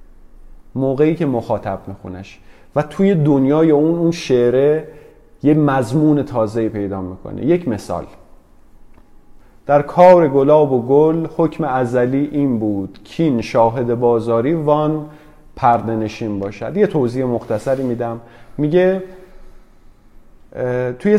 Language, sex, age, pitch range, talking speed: Persian, male, 30-49, 115-160 Hz, 110 wpm